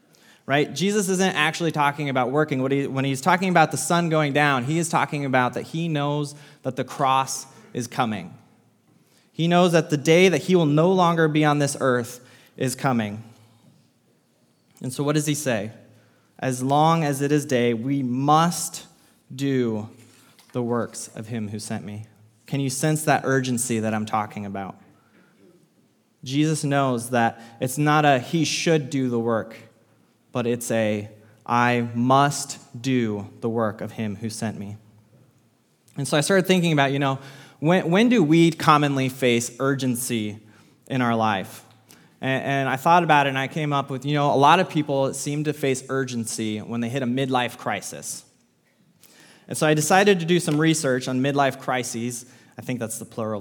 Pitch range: 120-150 Hz